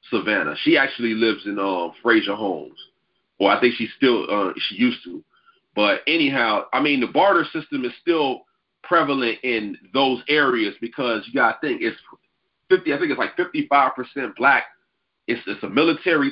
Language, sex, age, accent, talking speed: English, male, 40-59, American, 180 wpm